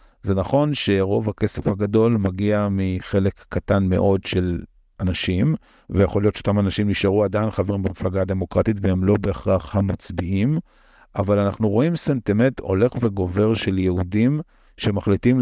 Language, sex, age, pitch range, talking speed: Hebrew, male, 50-69, 95-115 Hz, 130 wpm